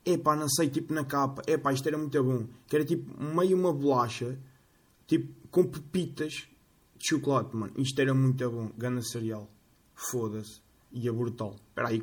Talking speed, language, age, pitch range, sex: 170 wpm, Portuguese, 20-39, 110-140 Hz, male